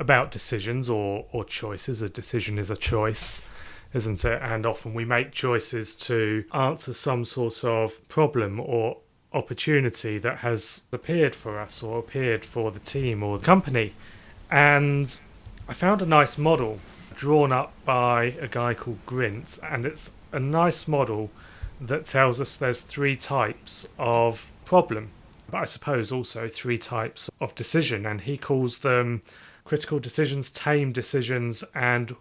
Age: 30-49